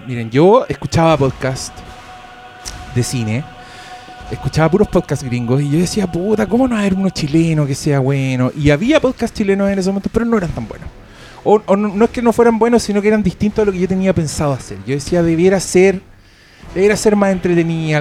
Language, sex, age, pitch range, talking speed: Spanish, male, 30-49, 125-185 Hz, 205 wpm